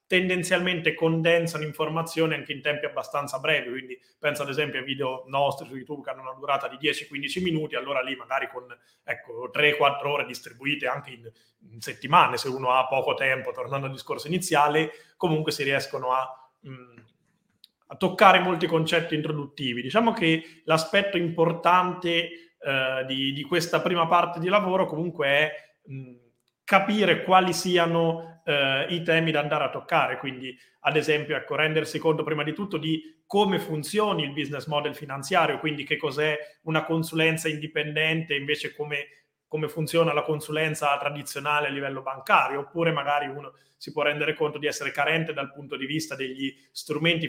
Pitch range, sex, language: 140-165 Hz, male, Italian